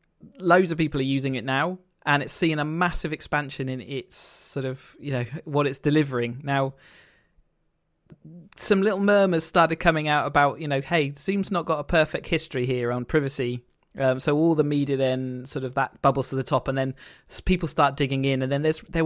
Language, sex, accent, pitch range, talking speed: English, male, British, 130-155 Hz, 205 wpm